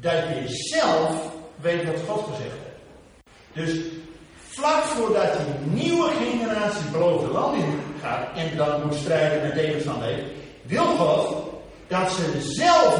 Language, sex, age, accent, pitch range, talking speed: Dutch, male, 50-69, Dutch, 150-240 Hz, 135 wpm